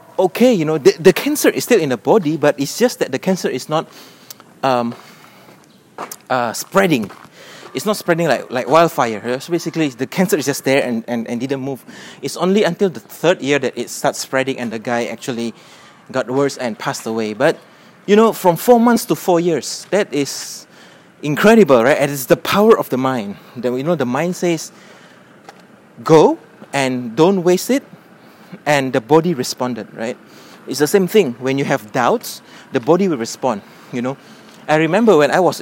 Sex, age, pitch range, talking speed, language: male, 30-49, 130-195 Hz, 195 wpm, English